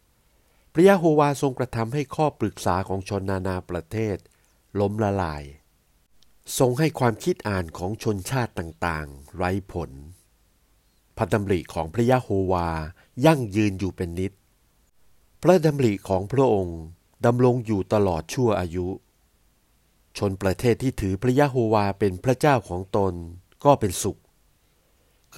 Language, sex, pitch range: Thai, male, 90-120 Hz